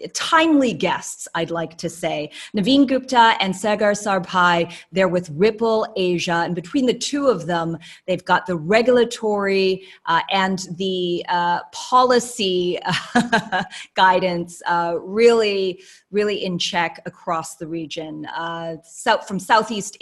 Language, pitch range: English, 170-210 Hz